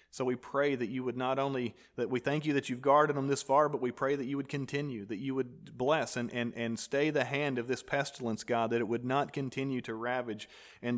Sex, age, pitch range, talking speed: male, 40-59, 120-145 Hz, 255 wpm